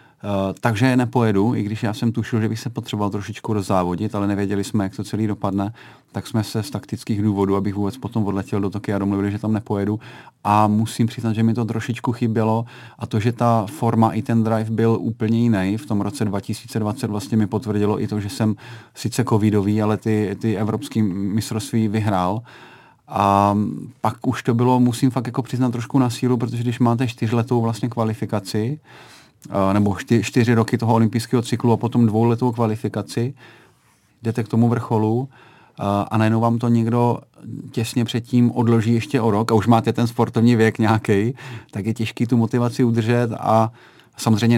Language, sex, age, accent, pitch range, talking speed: Czech, male, 30-49, native, 105-120 Hz, 180 wpm